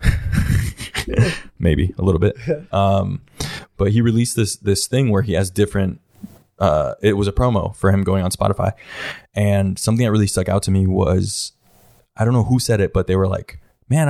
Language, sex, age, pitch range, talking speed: English, male, 20-39, 95-110 Hz, 190 wpm